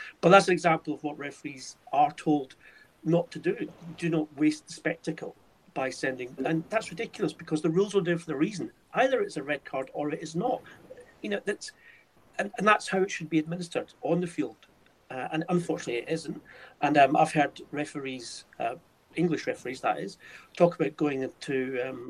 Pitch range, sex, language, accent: 145-180 Hz, male, English, British